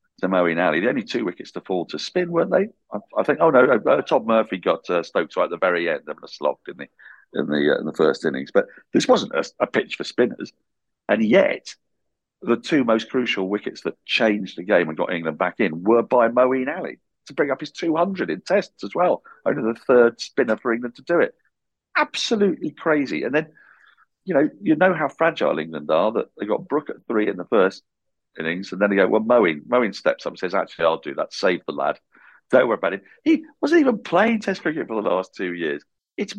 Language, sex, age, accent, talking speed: English, male, 50-69, British, 235 wpm